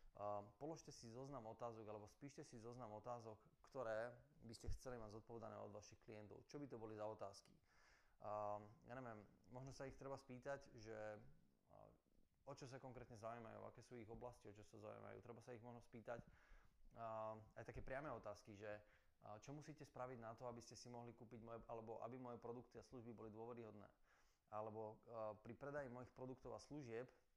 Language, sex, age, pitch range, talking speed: Slovak, male, 20-39, 110-130 Hz, 190 wpm